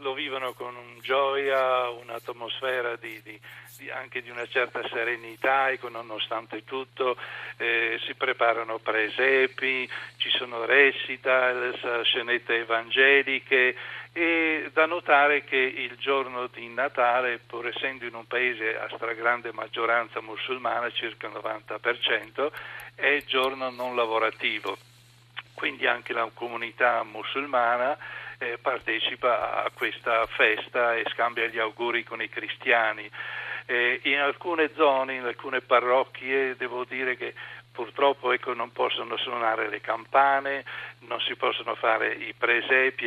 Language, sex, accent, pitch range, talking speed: Italian, male, native, 115-135 Hz, 130 wpm